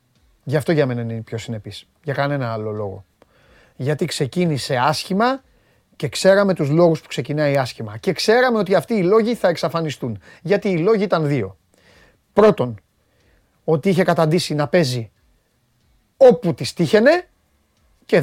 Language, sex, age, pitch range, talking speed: Greek, male, 30-49, 145-205 Hz, 150 wpm